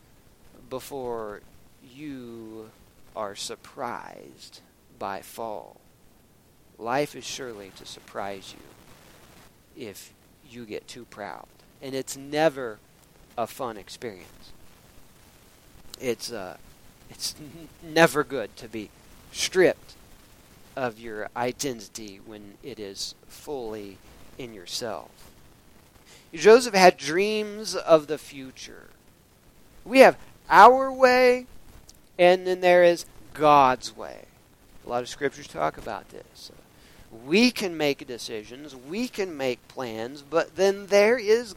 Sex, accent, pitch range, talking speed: male, American, 115-175 Hz, 110 wpm